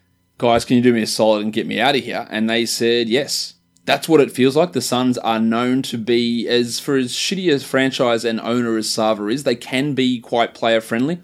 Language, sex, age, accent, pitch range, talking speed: English, male, 20-39, Australian, 105-120 Hz, 235 wpm